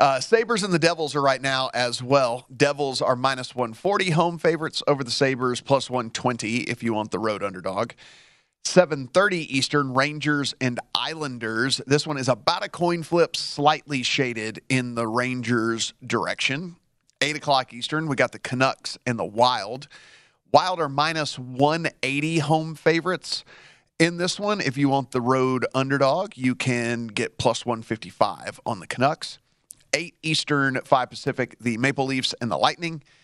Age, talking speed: 40-59, 160 wpm